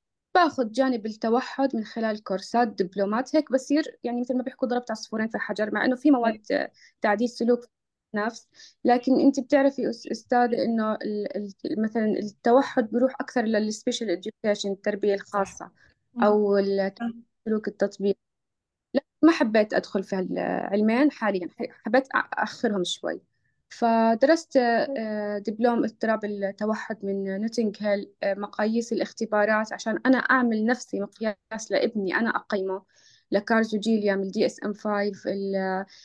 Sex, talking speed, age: female, 125 wpm, 20-39